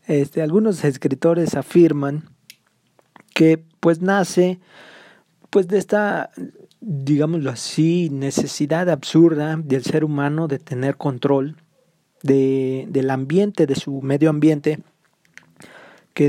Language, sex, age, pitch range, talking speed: Spanish, male, 40-59, 135-170 Hz, 95 wpm